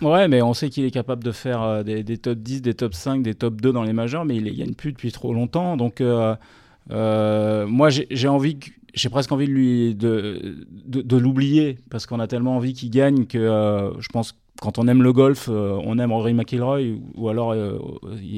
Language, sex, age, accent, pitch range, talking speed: French, male, 30-49, French, 115-135 Hz, 240 wpm